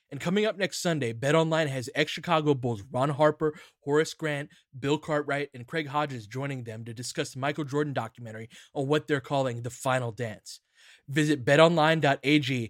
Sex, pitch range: male, 120-150 Hz